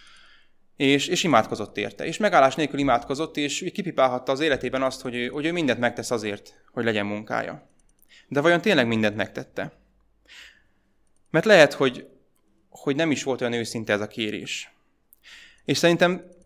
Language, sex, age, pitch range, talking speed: Hungarian, male, 20-39, 115-140 Hz, 150 wpm